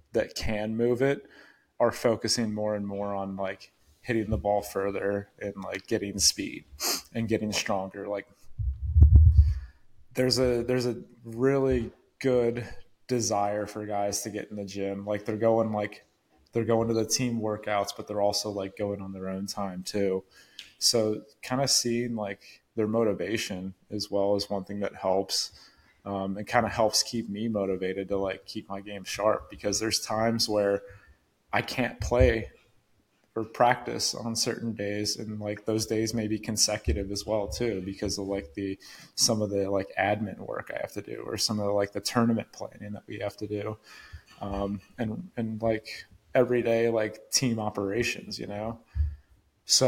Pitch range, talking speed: 100-115 Hz, 175 wpm